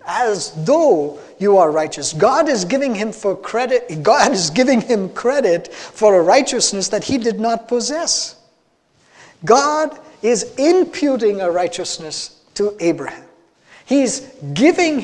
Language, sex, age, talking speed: English, male, 50-69, 130 wpm